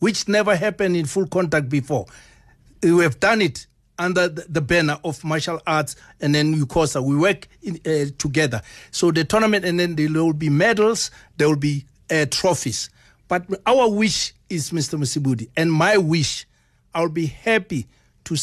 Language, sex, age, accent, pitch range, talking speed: English, male, 60-79, South African, 145-190 Hz, 165 wpm